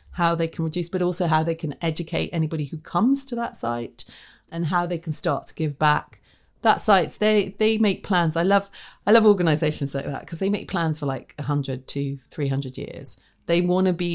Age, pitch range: 30-49, 140-175 Hz